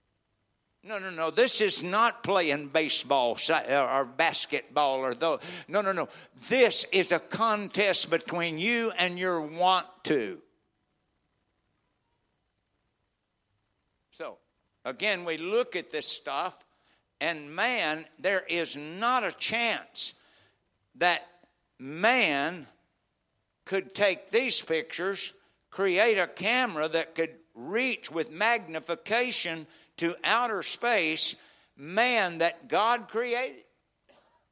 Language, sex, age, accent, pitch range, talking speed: English, male, 60-79, American, 170-240 Hz, 105 wpm